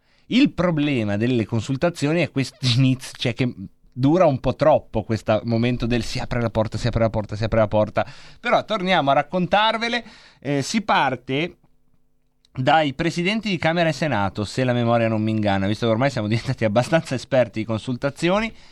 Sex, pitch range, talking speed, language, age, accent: male, 110-155 Hz, 175 wpm, Italian, 30-49, native